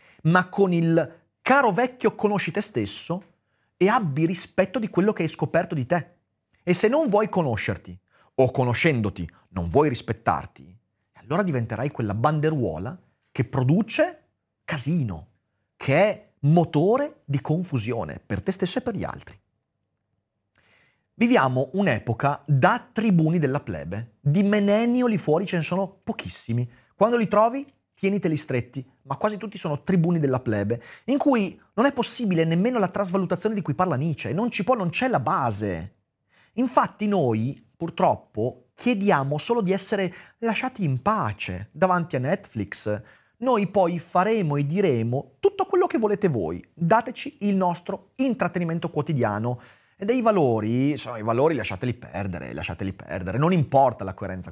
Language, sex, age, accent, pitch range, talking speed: Italian, male, 30-49, native, 120-200 Hz, 145 wpm